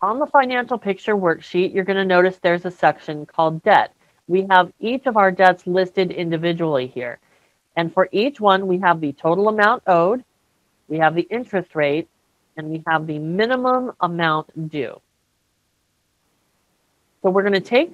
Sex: female